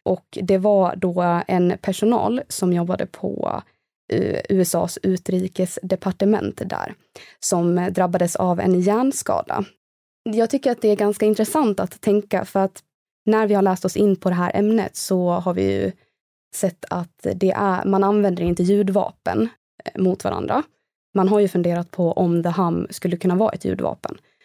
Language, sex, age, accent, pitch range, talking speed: Swedish, female, 20-39, native, 170-195 Hz, 160 wpm